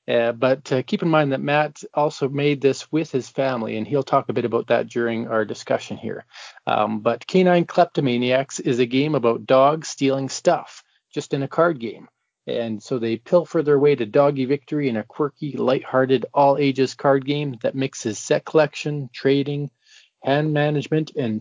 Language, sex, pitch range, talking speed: English, male, 120-150 Hz, 185 wpm